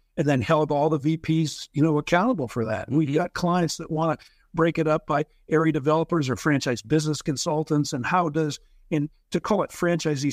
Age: 60-79